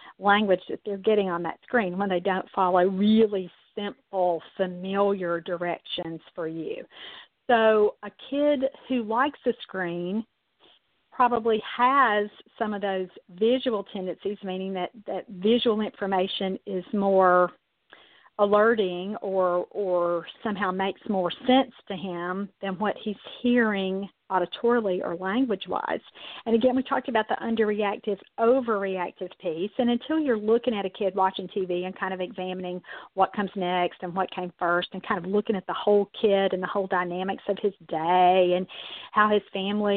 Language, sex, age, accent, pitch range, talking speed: English, female, 50-69, American, 185-215 Hz, 155 wpm